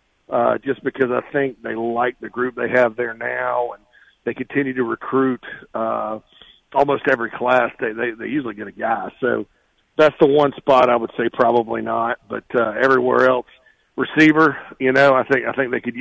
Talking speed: 195 wpm